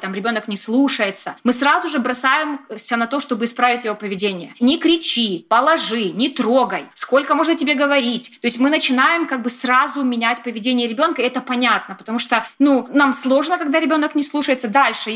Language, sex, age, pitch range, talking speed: Russian, female, 20-39, 220-270 Hz, 175 wpm